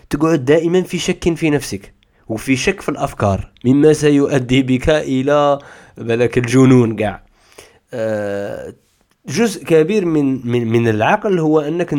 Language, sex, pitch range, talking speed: Arabic, male, 115-155 Hz, 125 wpm